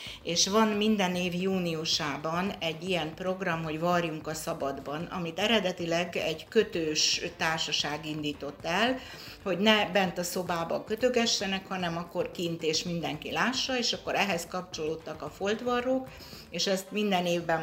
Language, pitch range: Hungarian, 155-195 Hz